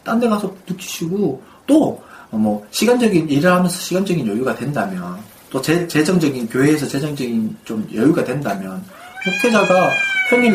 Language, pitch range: Korean, 120-185 Hz